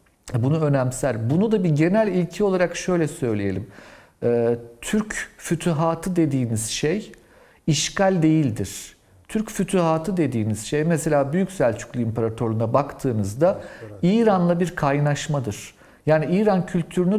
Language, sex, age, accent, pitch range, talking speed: Turkish, male, 50-69, native, 120-185 Hz, 110 wpm